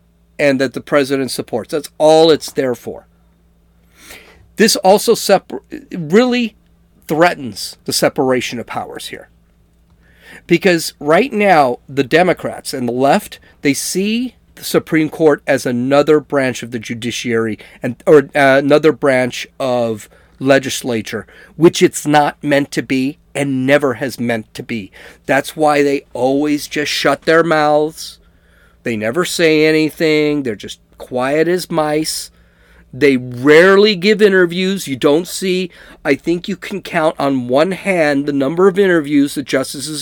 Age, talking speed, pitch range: 40-59, 145 wpm, 125-165 Hz